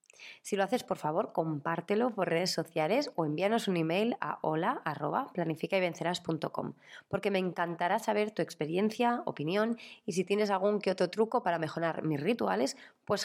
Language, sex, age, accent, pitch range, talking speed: Spanish, female, 20-39, Spanish, 160-215 Hz, 155 wpm